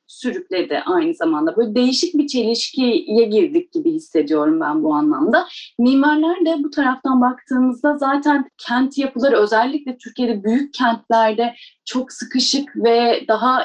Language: Turkish